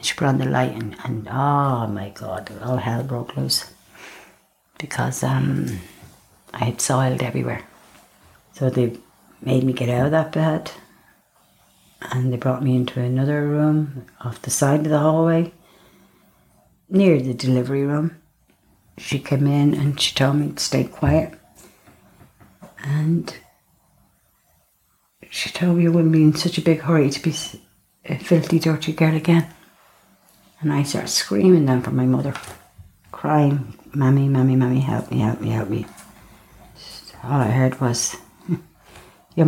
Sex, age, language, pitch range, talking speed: female, 60-79, English, 125-165 Hz, 150 wpm